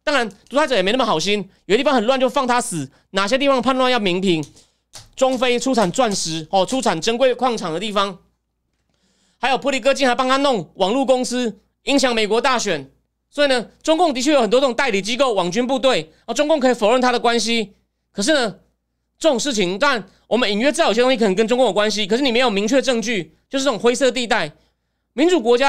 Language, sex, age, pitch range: Chinese, male, 30-49, 205-280 Hz